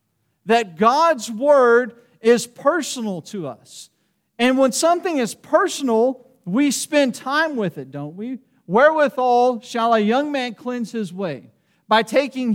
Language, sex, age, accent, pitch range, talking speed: English, male, 40-59, American, 215-275 Hz, 140 wpm